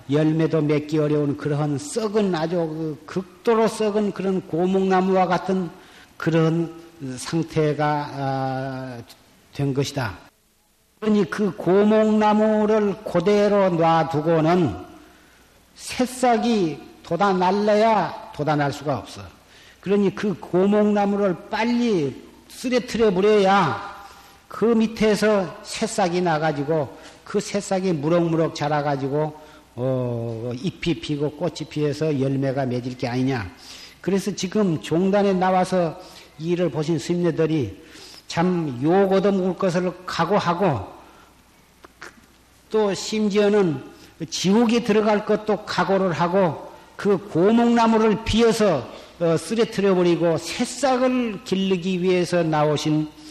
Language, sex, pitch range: Korean, male, 150-205 Hz